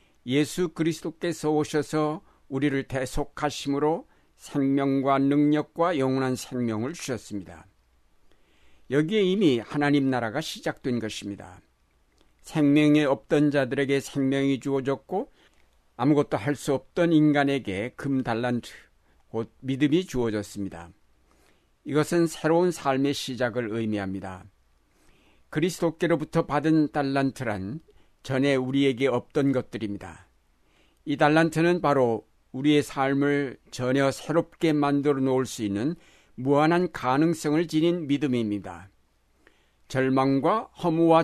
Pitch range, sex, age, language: 110-150 Hz, male, 60-79, Korean